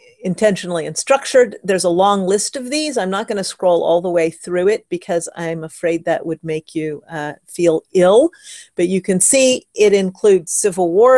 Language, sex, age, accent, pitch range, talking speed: English, female, 50-69, American, 170-210 Hz, 195 wpm